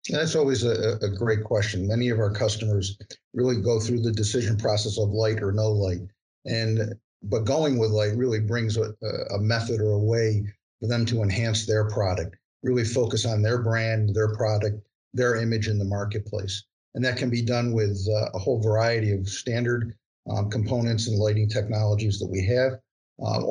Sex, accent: male, American